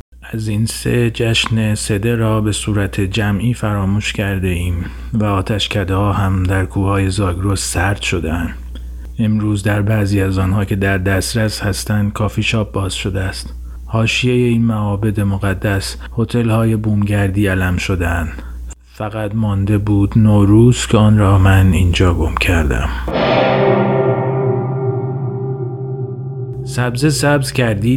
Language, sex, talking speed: Persian, male, 130 wpm